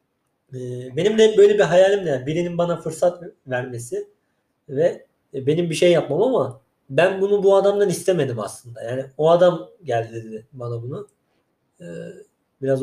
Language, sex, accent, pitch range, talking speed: Turkish, male, native, 130-185 Hz, 140 wpm